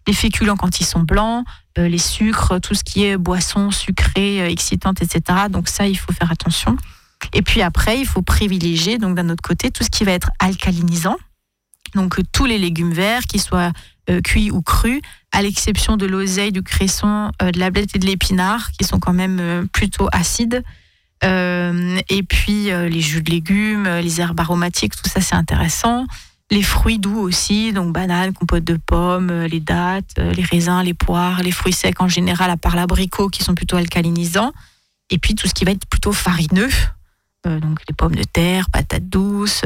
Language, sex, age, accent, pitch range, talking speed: French, female, 30-49, French, 175-205 Hz, 200 wpm